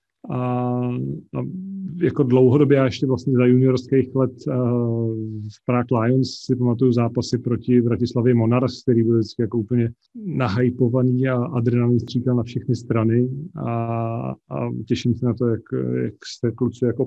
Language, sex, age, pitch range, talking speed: Slovak, male, 30-49, 115-125 Hz, 150 wpm